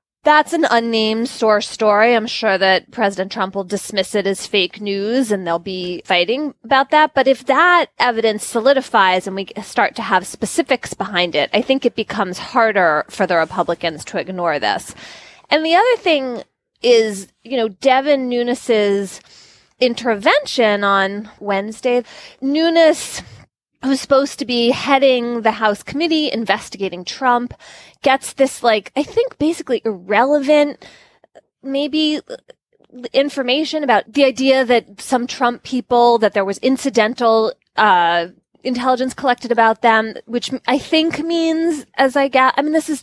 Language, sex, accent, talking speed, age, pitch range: English, female, American, 145 wpm, 20-39, 205-270 Hz